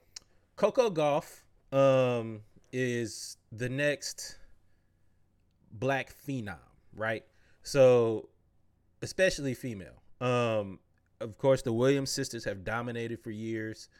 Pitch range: 100-125 Hz